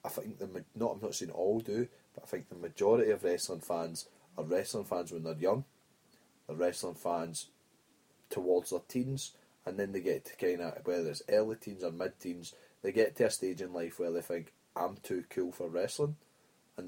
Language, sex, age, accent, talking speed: English, male, 20-39, British, 205 wpm